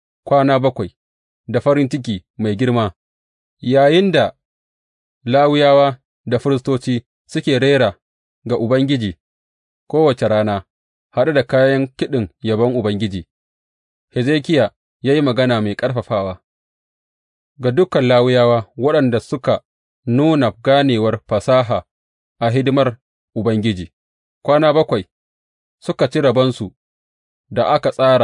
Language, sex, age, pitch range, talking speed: English, male, 30-49, 95-135 Hz, 95 wpm